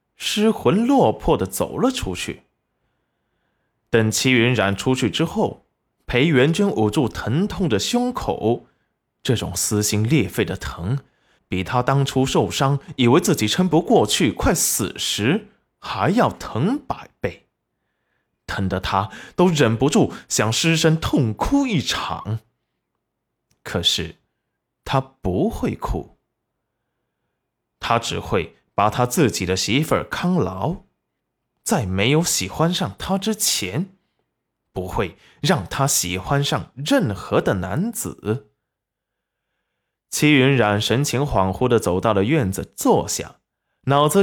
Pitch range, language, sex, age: 105-175 Hz, Chinese, male, 20-39